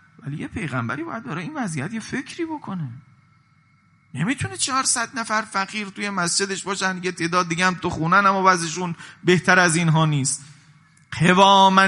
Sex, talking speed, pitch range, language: male, 150 wpm, 160-225 Hz, Persian